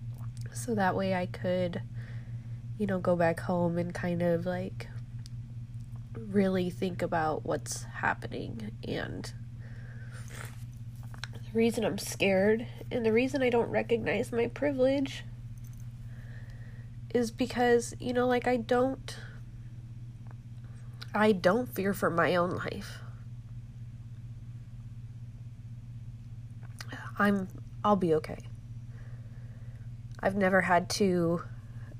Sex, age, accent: female, 20-39, American